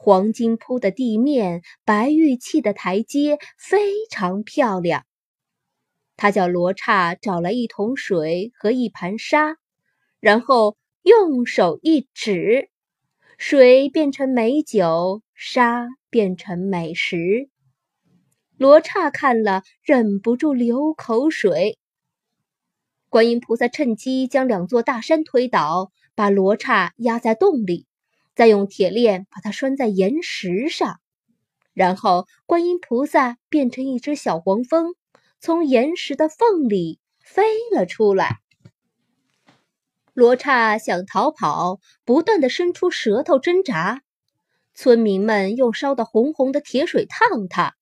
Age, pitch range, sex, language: 20-39, 205-310 Hz, female, Chinese